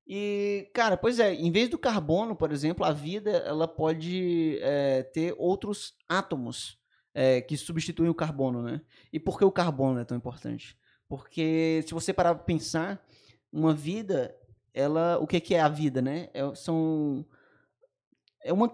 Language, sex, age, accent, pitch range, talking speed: Portuguese, male, 20-39, Brazilian, 150-190 Hz, 165 wpm